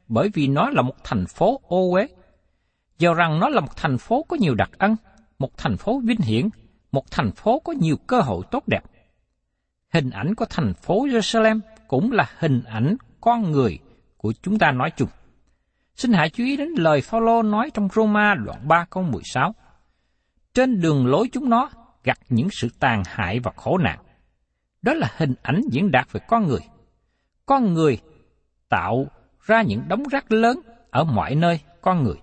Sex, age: male, 60-79